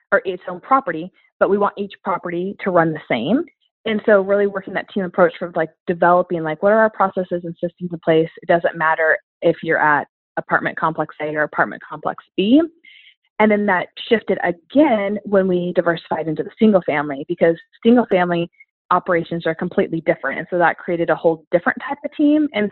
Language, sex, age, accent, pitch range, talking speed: English, female, 20-39, American, 170-210 Hz, 200 wpm